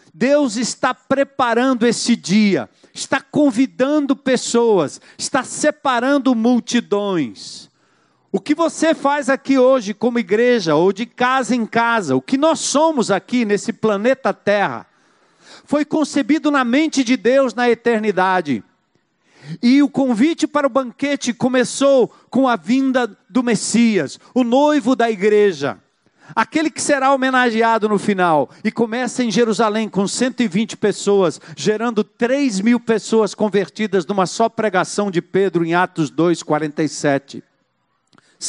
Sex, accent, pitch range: male, Brazilian, 205-255 Hz